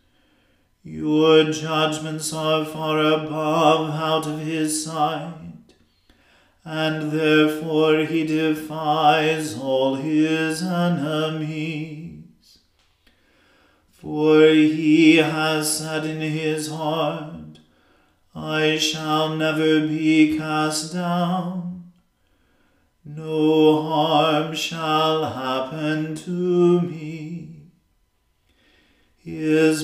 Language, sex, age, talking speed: English, male, 40-59, 70 wpm